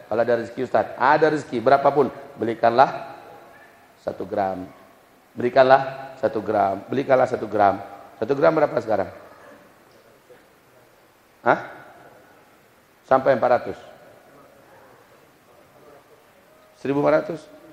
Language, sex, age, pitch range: Indonesian, male, 40-59, 125-175 Hz